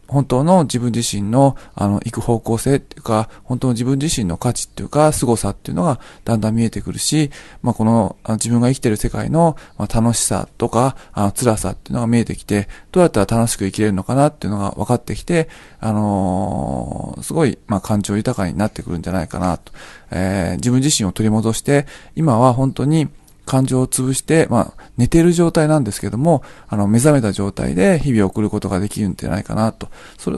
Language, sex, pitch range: Japanese, male, 100-130 Hz